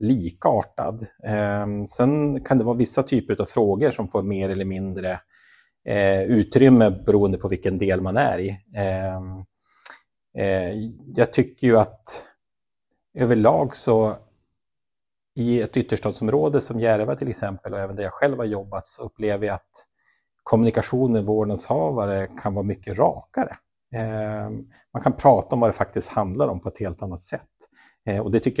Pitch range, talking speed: 95-115 Hz, 145 wpm